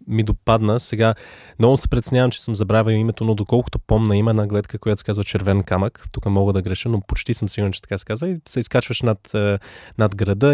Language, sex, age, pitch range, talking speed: Bulgarian, male, 20-39, 100-115 Hz, 220 wpm